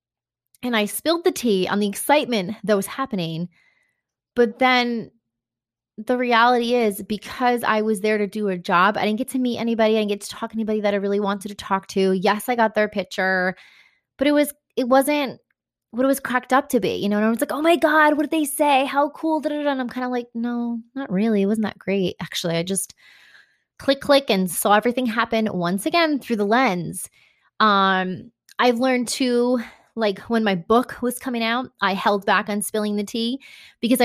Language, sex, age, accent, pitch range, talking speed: English, female, 20-39, American, 200-255 Hz, 215 wpm